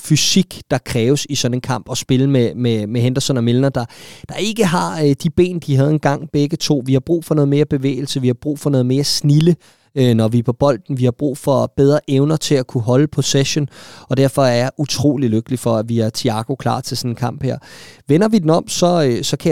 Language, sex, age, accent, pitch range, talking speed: Danish, male, 20-39, native, 125-145 Hz, 250 wpm